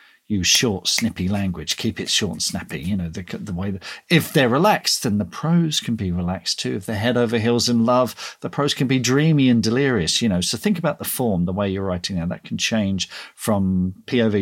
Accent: British